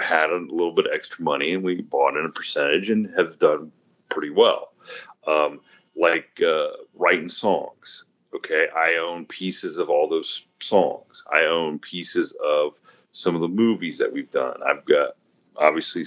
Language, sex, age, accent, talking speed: English, male, 30-49, American, 170 wpm